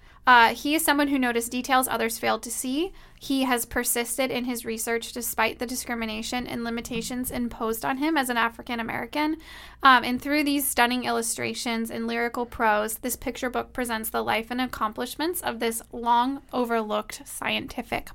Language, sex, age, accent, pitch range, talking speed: English, female, 10-29, American, 225-265 Hz, 160 wpm